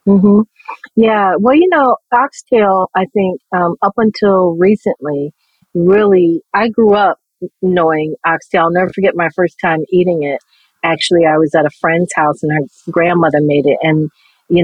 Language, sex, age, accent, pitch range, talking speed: English, female, 40-59, American, 160-245 Hz, 165 wpm